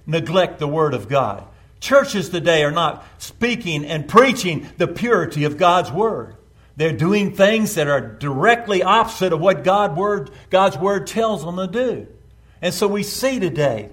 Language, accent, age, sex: English, American, 50-69, male